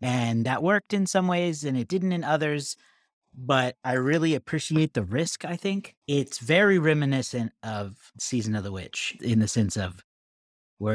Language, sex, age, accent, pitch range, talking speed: English, male, 30-49, American, 115-165 Hz, 175 wpm